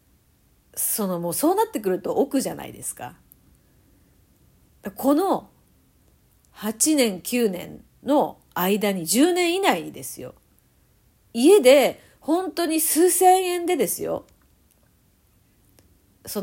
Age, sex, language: 40-59, female, Japanese